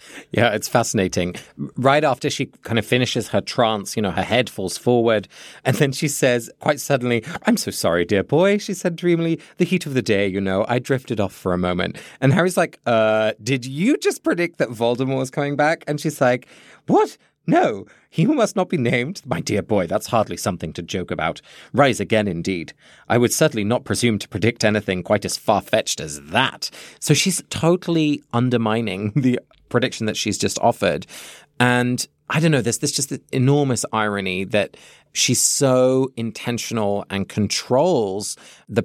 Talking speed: 185 wpm